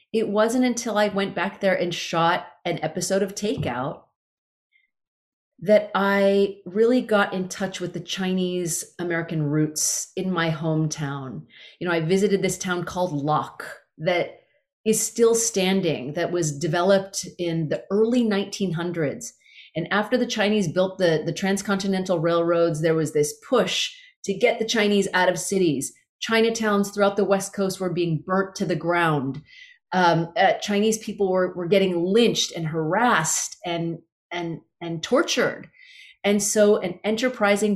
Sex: female